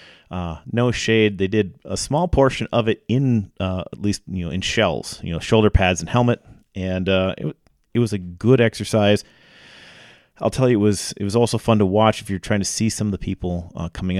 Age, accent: 30-49, American